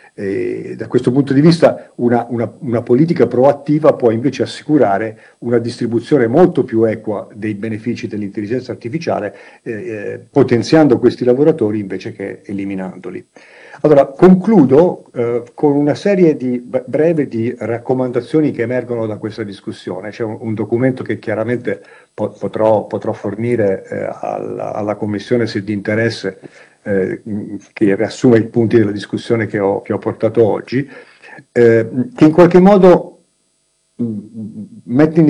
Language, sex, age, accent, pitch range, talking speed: Italian, male, 50-69, native, 110-150 Hz, 135 wpm